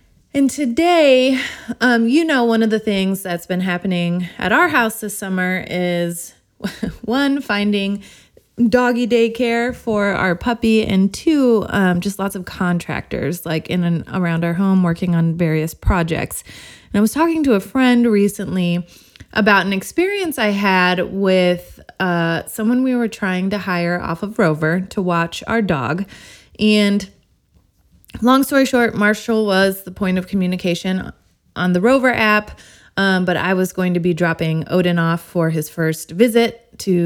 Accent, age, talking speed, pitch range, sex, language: American, 20-39, 160 wpm, 175-225 Hz, female, English